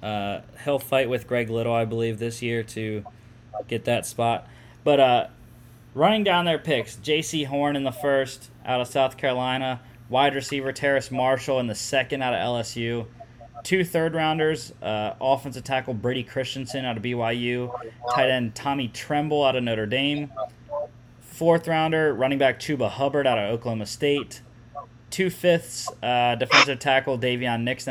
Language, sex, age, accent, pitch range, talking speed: English, male, 20-39, American, 115-135 Hz, 150 wpm